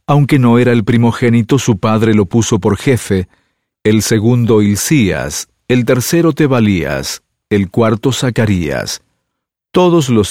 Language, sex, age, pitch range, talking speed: English, male, 50-69, 105-130 Hz, 130 wpm